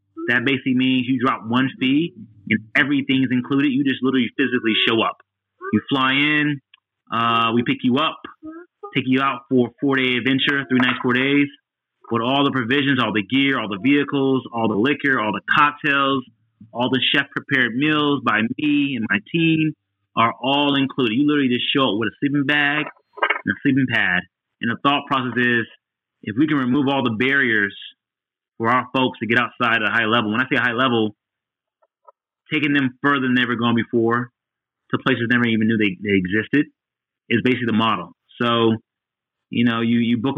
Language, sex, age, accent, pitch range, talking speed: English, male, 30-49, American, 120-145 Hz, 195 wpm